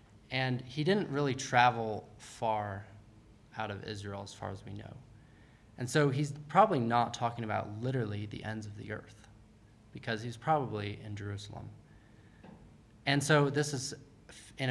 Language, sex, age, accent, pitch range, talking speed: English, male, 20-39, American, 110-130 Hz, 150 wpm